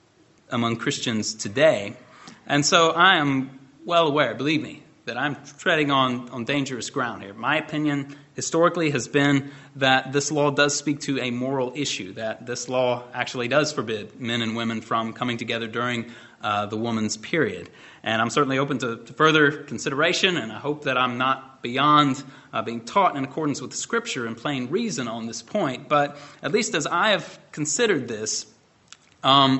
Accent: American